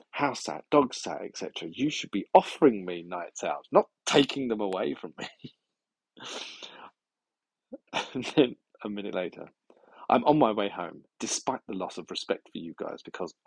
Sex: male